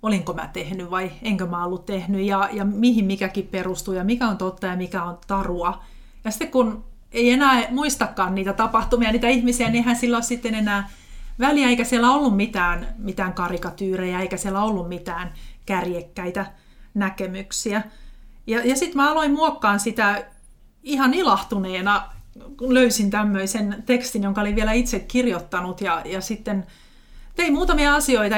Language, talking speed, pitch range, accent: Finnish, 155 wpm, 190-225 Hz, native